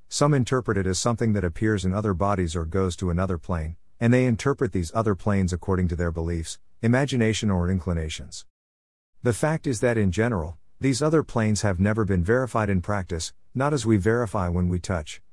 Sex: male